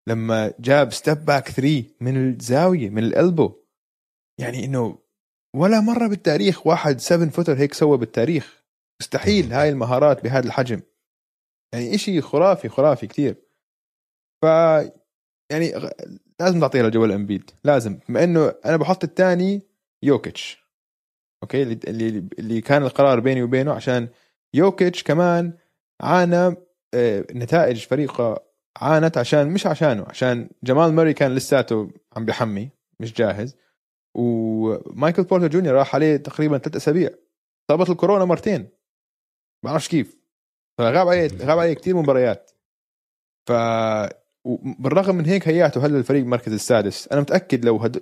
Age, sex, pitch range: 20-39, male, 115-165 Hz